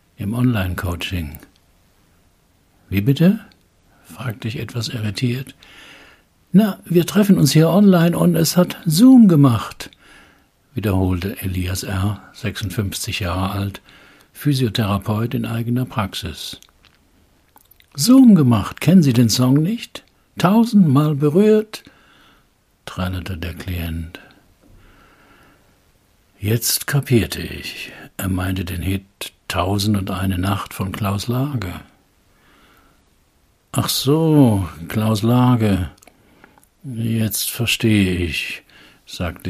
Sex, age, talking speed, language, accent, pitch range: male, 60-79, 95 wpm, German, German, 90-135 Hz